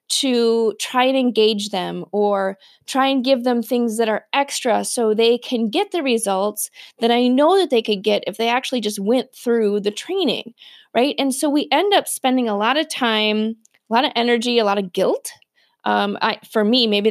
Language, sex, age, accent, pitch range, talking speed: English, female, 20-39, American, 210-260 Hz, 205 wpm